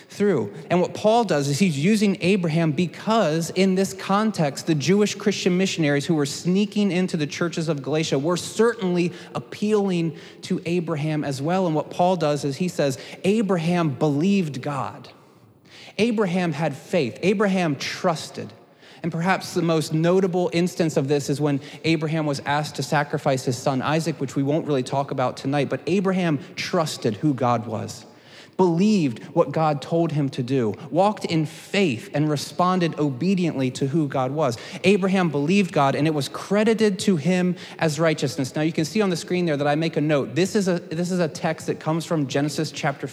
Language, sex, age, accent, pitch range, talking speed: English, male, 30-49, American, 145-190 Hz, 180 wpm